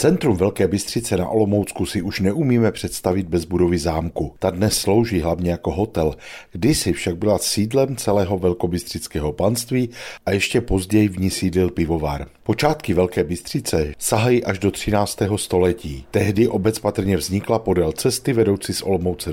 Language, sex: Czech, male